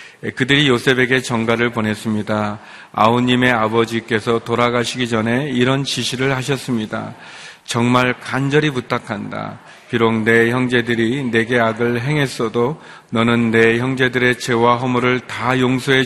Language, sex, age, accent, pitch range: Korean, male, 40-59, native, 115-125 Hz